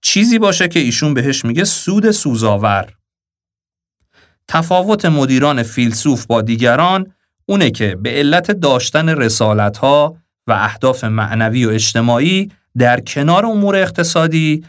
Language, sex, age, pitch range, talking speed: Persian, male, 40-59, 110-160 Hz, 120 wpm